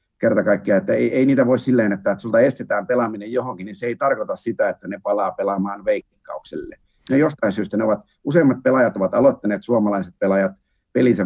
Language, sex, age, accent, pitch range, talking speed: Finnish, male, 50-69, native, 95-125 Hz, 190 wpm